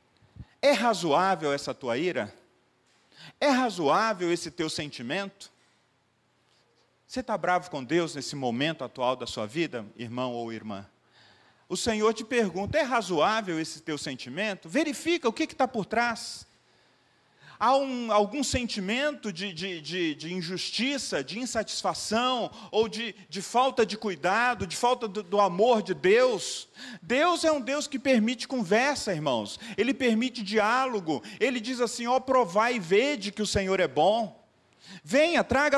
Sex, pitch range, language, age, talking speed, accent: male, 190-260 Hz, Portuguese, 40-59, 145 wpm, Brazilian